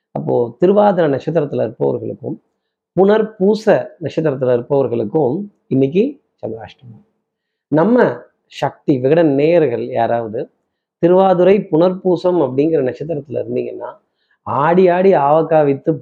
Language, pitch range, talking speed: Tamil, 130-170 Hz, 85 wpm